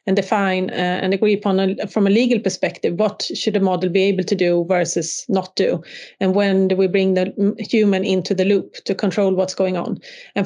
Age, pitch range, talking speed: 30-49, 185-205 Hz, 220 wpm